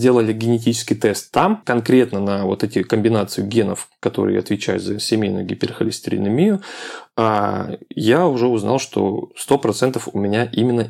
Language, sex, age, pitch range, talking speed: Russian, male, 20-39, 110-130 Hz, 125 wpm